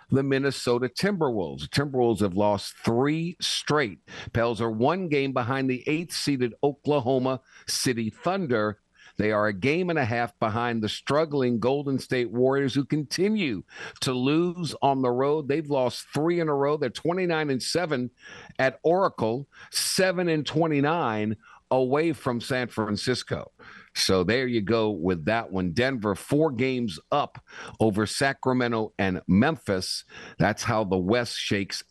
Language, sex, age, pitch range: English, male, 50-69, 105-140 Hz